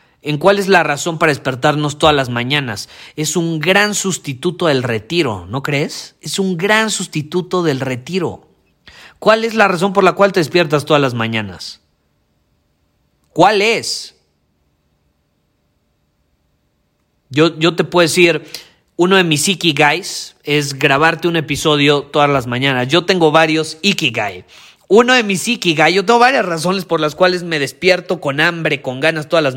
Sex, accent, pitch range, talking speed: male, Mexican, 135-185 Hz, 155 wpm